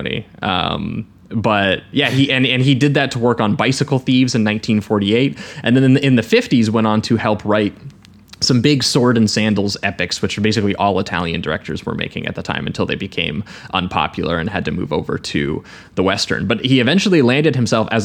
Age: 20-39